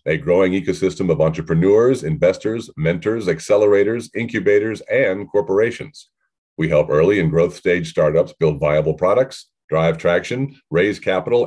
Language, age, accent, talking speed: English, 40-59, American, 130 wpm